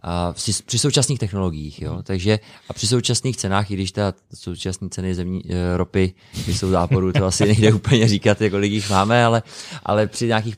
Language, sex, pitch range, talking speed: Czech, male, 95-110 Hz, 175 wpm